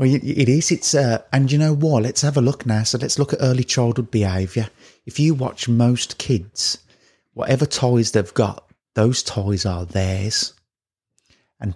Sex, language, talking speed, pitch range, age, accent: male, English, 180 wpm, 105-130 Hz, 30-49, British